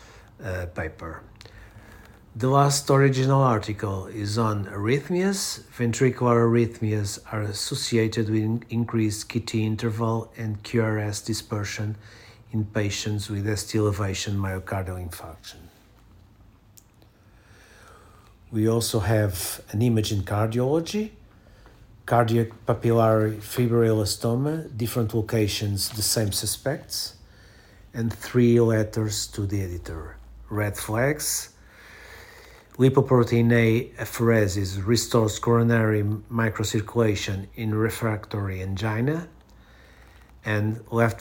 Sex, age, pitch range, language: male, 50-69, 105-115 Hz, Portuguese